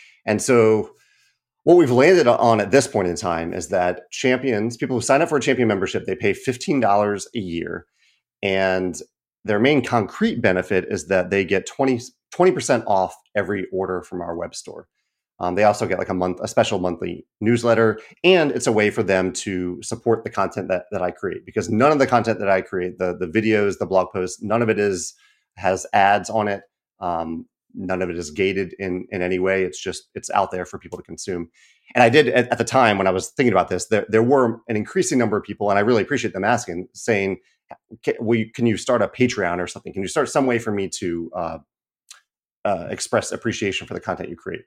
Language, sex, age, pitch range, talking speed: English, male, 30-49, 95-120 Hz, 220 wpm